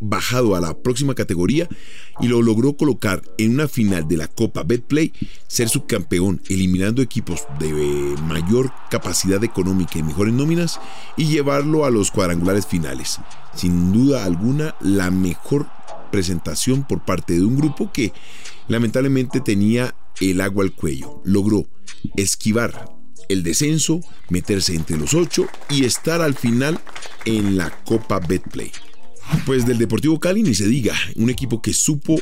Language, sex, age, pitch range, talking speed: Spanish, male, 40-59, 95-130 Hz, 145 wpm